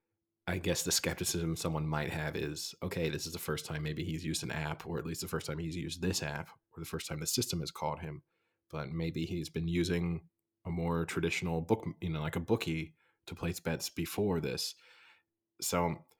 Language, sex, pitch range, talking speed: English, male, 80-90 Hz, 215 wpm